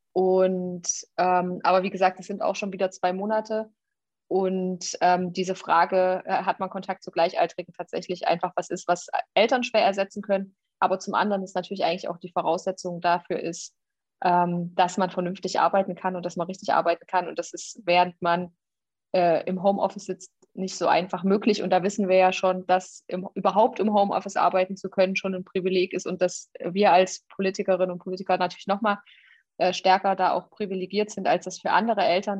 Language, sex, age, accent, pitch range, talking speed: German, female, 20-39, German, 175-195 Hz, 195 wpm